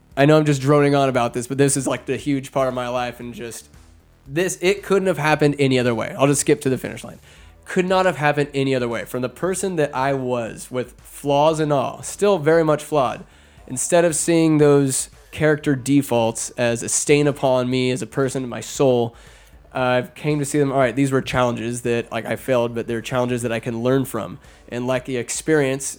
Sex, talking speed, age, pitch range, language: male, 230 wpm, 20-39, 120-145 Hz, English